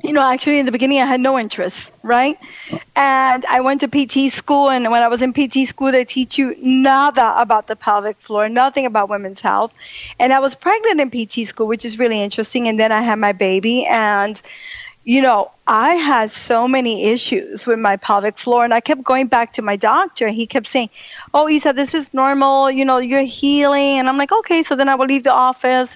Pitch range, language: 225-280 Hz, English